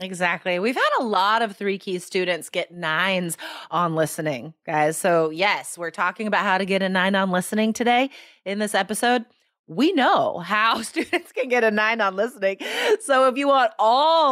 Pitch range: 170-230 Hz